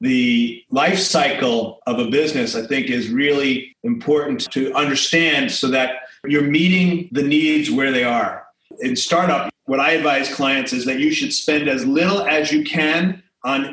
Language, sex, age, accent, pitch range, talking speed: English, male, 40-59, American, 135-185 Hz, 170 wpm